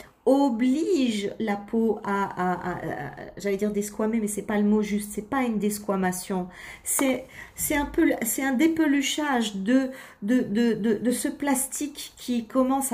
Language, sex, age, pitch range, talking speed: French, female, 40-59, 210-270 Hz, 170 wpm